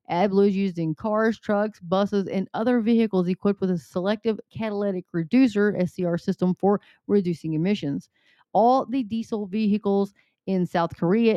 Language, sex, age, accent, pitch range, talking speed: English, female, 30-49, American, 180-230 Hz, 150 wpm